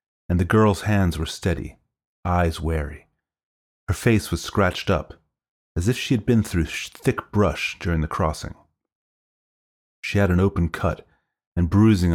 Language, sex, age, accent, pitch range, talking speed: English, male, 30-49, American, 75-100 Hz, 155 wpm